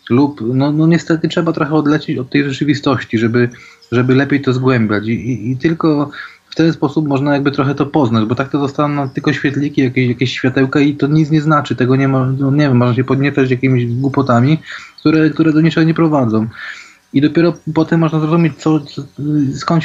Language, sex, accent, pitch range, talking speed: Polish, male, native, 130-150 Hz, 200 wpm